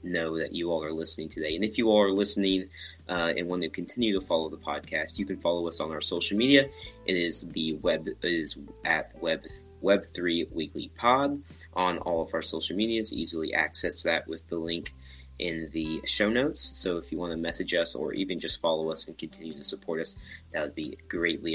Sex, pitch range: male, 80-100 Hz